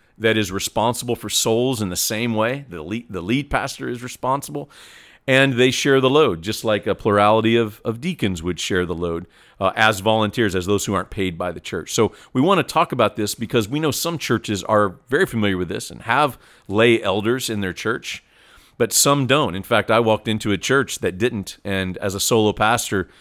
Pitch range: 100-120 Hz